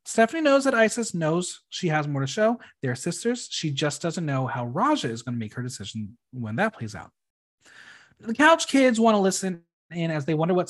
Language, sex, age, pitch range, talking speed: English, male, 30-49, 125-205 Hz, 220 wpm